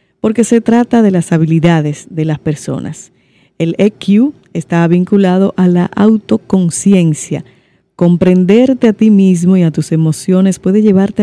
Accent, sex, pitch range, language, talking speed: American, female, 165-205 Hz, Spanish, 140 wpm